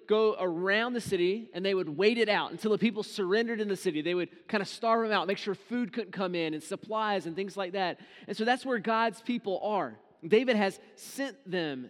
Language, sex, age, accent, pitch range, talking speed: English, male, 30-49, American, 180-215 Hz, 235 wpm